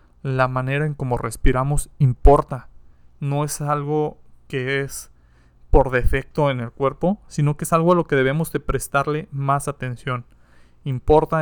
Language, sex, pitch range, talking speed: Spanish, male, 125-150 Hz, 150 wpm